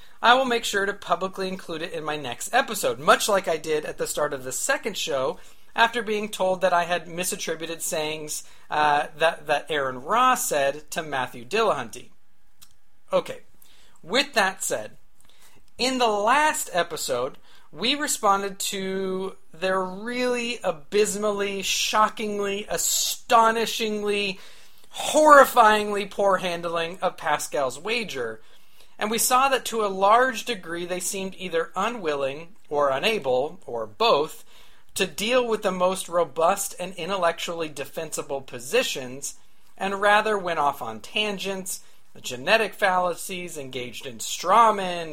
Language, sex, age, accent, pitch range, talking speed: English, male, 40-59, American, 165-215 Hz, 135 wpm